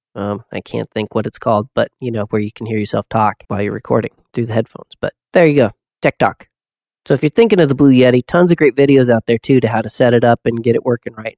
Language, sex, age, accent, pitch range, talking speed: English, male, 30-49, American, 110-140 Hz, 285 wpm